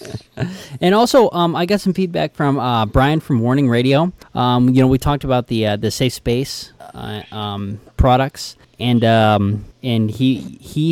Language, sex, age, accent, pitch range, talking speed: English, male, 20-39, American, 100-130 Hz, 175 wpm